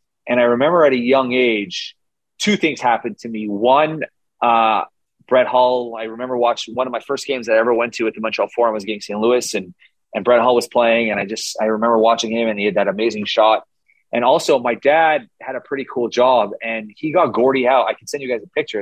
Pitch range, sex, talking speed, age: 110-140 Hz, male, 245 wpm, 30-49